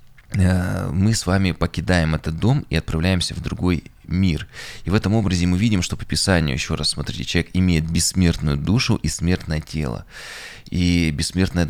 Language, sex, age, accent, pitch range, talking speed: Russian, male, 20-39, native, 80-95 Hz, 165 wpm